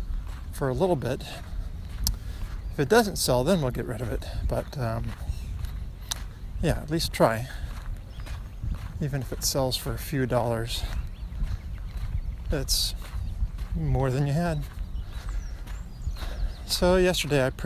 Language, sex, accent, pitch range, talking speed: English, male, American, 90-140 Hz, 115 wpm